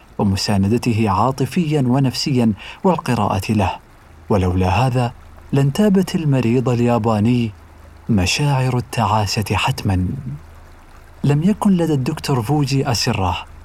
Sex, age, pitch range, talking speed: male, 40-59, 100-140 Hz, 85 wpm